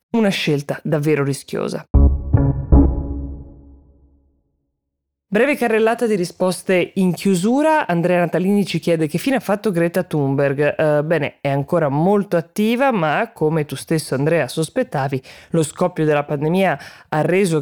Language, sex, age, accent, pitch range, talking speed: Italian, female, 20-39, native, 145-190 Hz, 130 wpm